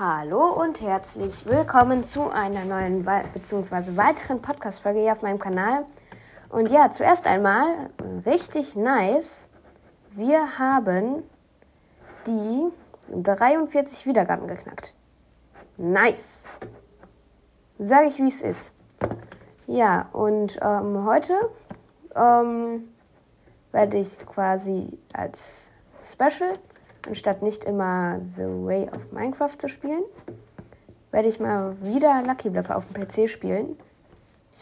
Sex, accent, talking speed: female, German, 105 wpm